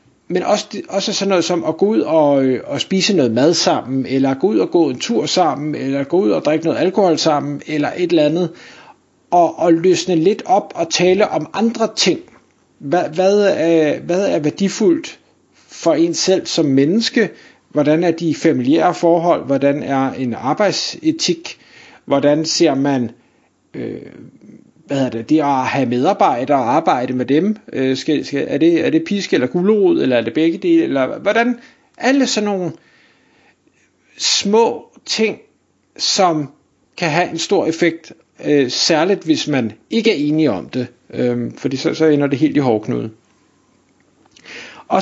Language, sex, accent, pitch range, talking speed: Danish, male, native, 140-195 Hz, 150 wpm